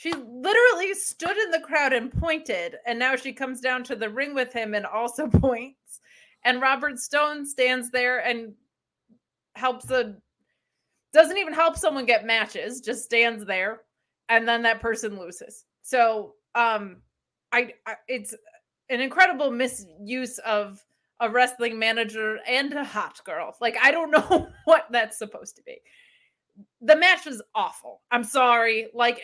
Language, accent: English, American